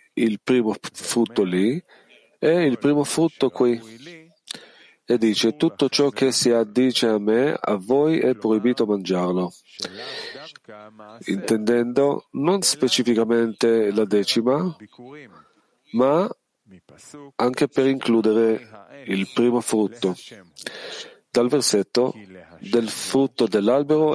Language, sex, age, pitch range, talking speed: Italian, male, 40-59, 105-135 Hz, 100 wpm